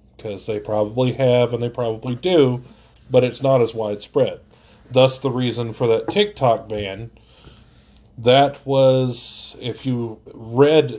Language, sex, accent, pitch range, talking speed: English, male, American, 110-145 Hz, 130 wpm